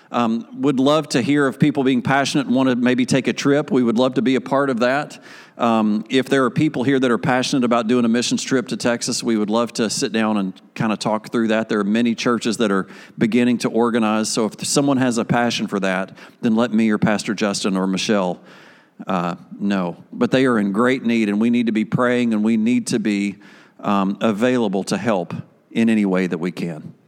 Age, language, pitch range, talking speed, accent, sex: 40-59, English, 115-155 Hz, 235 wpm, American, male